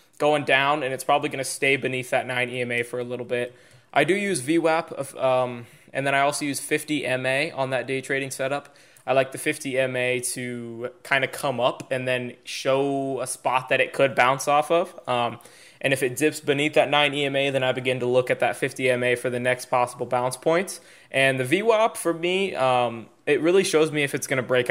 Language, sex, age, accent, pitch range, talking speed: English, male, 20-39, American, 125-150 Hz, 215 wpm